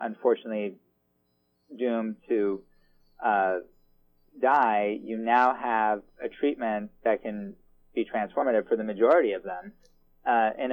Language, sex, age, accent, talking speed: English, male, 30-49, American, 115 wpm